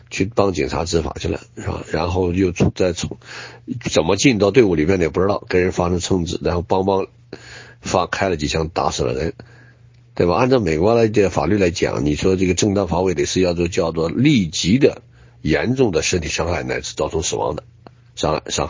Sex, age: male, 60-79